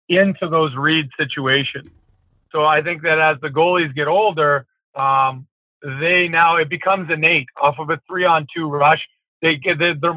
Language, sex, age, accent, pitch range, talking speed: English, male, 40-59, American, 145-170 Hz, 165 wpm